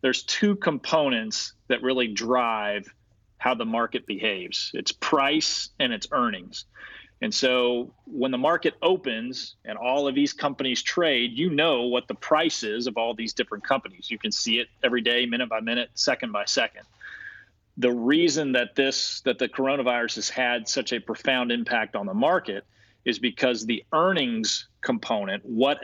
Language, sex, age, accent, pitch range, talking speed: English, male, 40-59, American, 120-140 Hz, 165 wpm